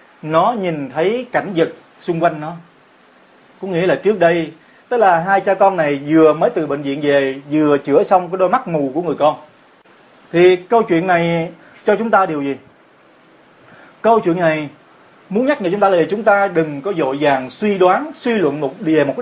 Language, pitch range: Vietnamese, 160-205 Hz